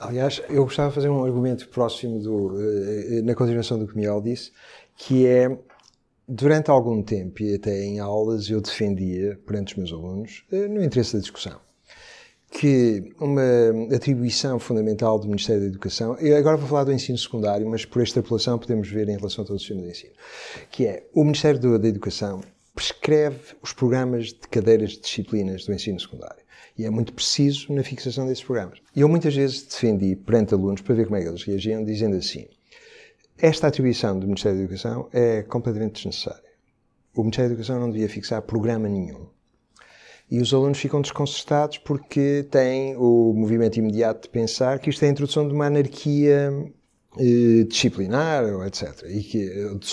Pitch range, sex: 105-135 Hz, male